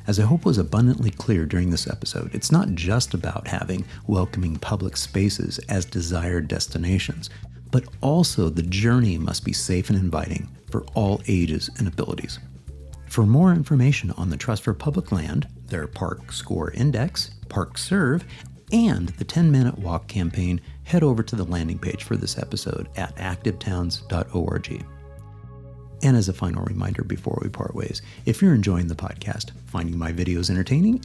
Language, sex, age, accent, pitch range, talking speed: English, male, 50-69, American, 85-115 Hz, 160 wpm